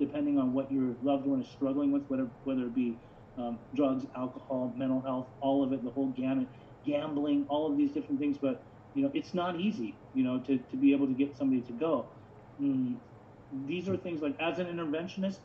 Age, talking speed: 30-49, 215 wpm